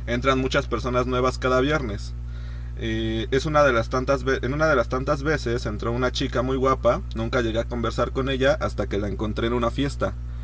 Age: 30-49